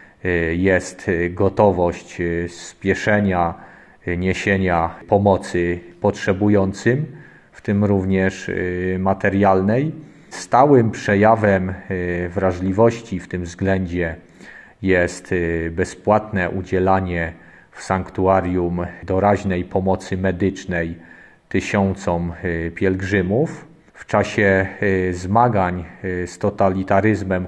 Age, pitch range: 40-59, 90-100 Hz